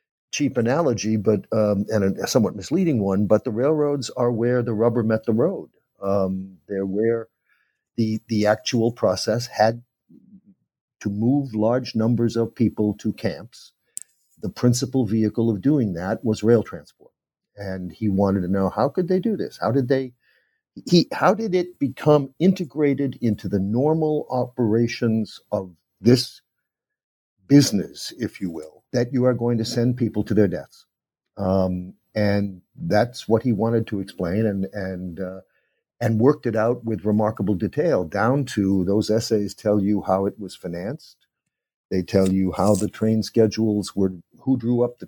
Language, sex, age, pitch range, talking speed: English, male, 50-69, 100-125 Hz, 165 wpm